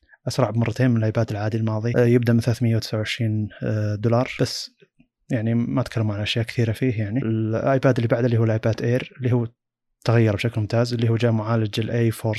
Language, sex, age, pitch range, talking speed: Arabic, male, 20-39, 110-120 Hz, 175 wpm